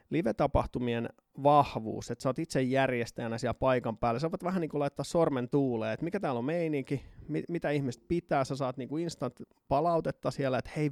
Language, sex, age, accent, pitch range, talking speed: Finnish, male, 30-49, native, 125-155 Hz, 190 wpm